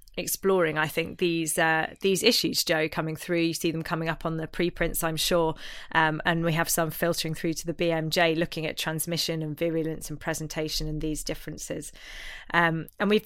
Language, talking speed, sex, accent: English, 195 wpm, female, British